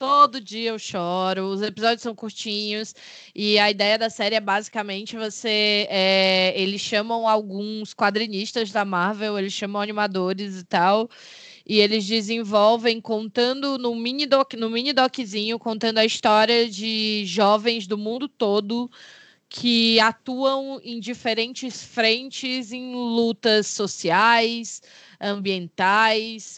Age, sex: 20-39, female